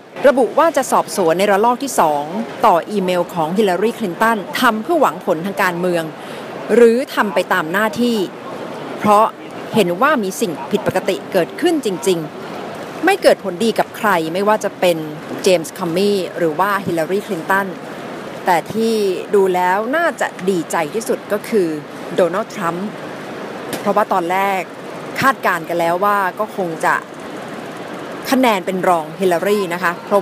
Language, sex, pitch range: Thai, female, 175-225 Hz